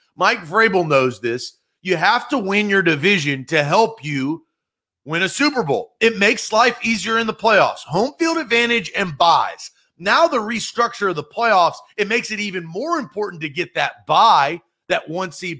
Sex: male